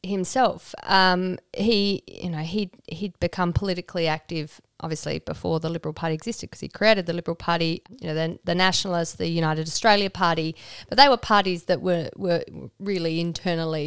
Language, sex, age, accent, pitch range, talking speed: English, female, 30-49, Australian, 165-210 Hz, 175 wpm